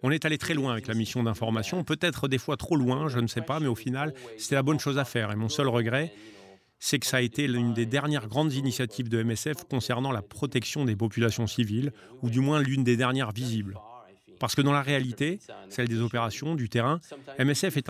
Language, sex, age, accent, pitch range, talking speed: French, male, 40-59, French, 115-140 Hz, 230 wpm